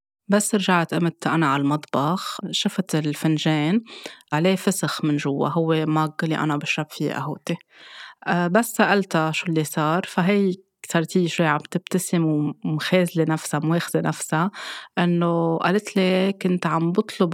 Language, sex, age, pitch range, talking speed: Arabic, female, 20-39, 150-175 Hz, 140 wpm